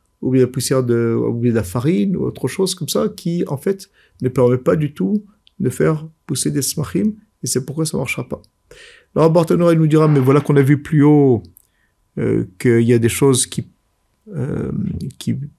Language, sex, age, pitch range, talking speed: French, male, 50-69, 120-170 Hz, 215 wpm